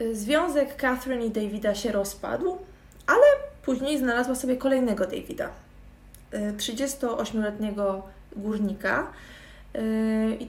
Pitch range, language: 195-245 Hz, Polish